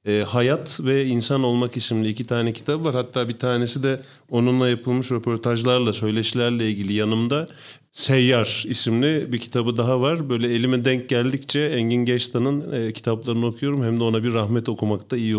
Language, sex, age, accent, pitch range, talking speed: Turkish, male, 40-59, native, 115-145 Hz, 170 wpm